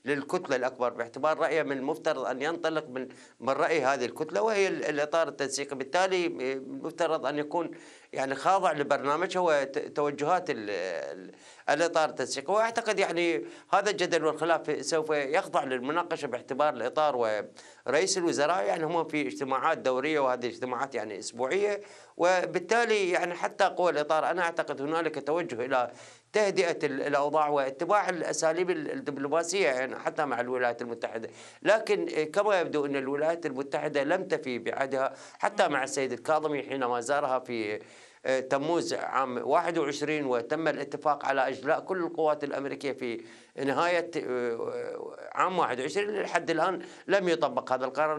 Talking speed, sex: 130 wpm, male